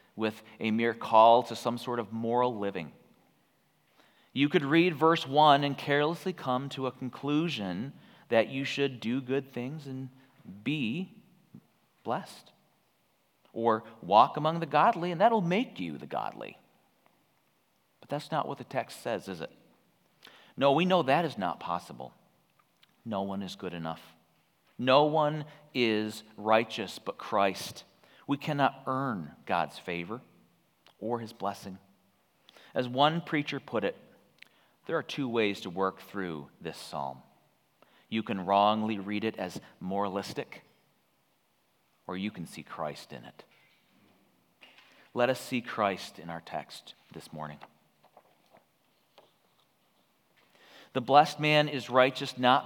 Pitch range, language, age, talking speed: 105-150 Hz, English, 40-59, 135 wpm